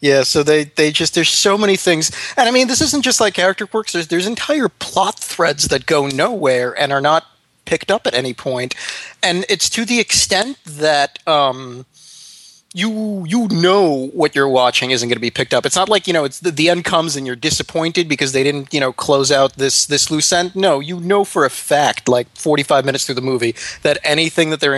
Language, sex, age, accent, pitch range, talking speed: English, male, 20-39, American, 130-175 Hz, 225 wpm